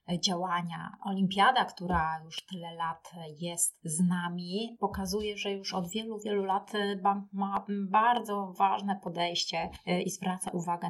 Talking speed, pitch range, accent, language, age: 125 wpm, 175-200 Hz, native, Polish, 30-49